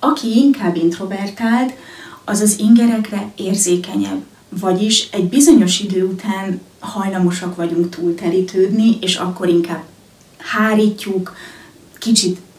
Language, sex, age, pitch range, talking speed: Hungarian, female, 30-49, 175-210 Hz, 95 wpm